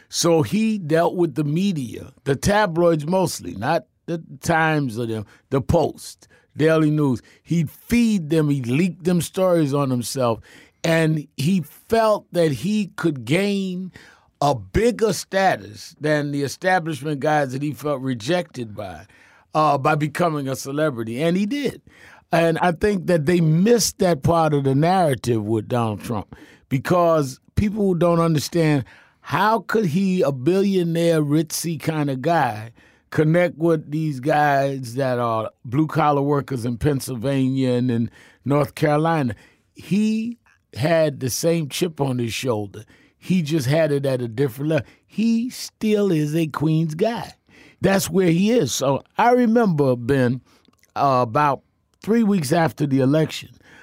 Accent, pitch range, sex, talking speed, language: American, 135-175 Hz, male, 145 wpm, English